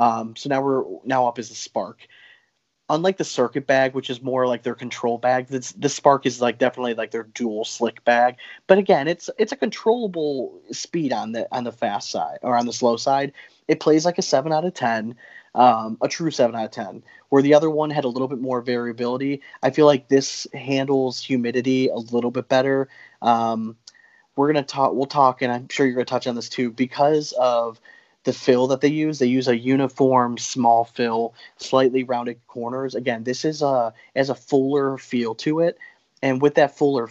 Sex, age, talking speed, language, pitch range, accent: male, 20-39, 210 wpm, English, 120-140 Hz, American